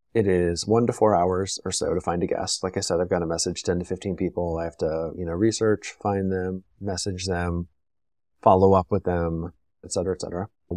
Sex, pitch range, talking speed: male, 85-105 Hz, 230 wpm